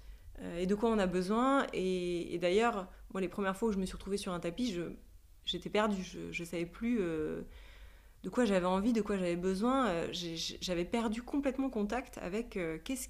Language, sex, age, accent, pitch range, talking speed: French, female, 30-49, French, 185-230 Hz, 205 wpm